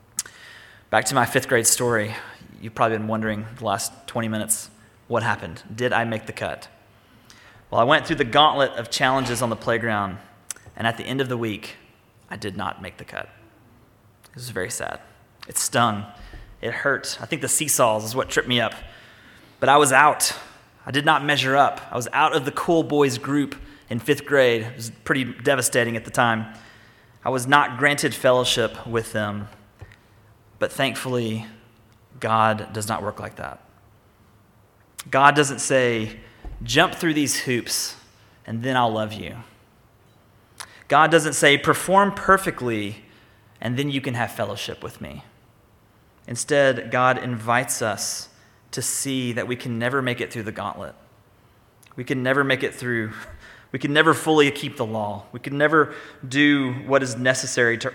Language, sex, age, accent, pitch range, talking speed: English, male, 30-49, American, 110-135 Hz, 170 wpm